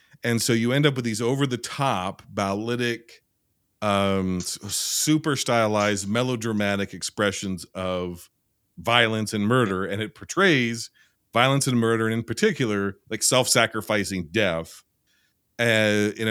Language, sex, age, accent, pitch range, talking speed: English, male, 40-59, American, 95-125 Hz, 120 wpm